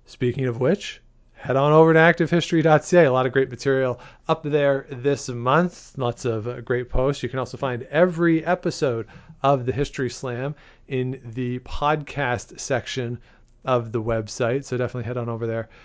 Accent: American